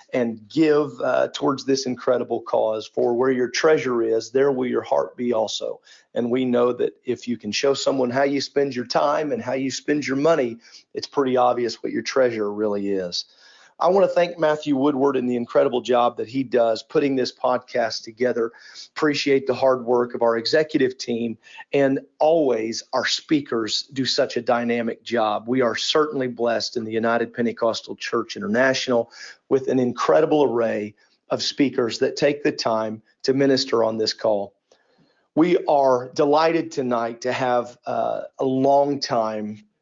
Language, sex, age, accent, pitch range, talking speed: English, male, 40-59, American, 115-140 Hz, 170 wpm